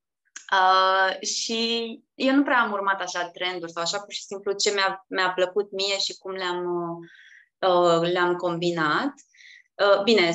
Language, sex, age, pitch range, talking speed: Romanian, female, 20-39, 190-255 Hz, 155 wpm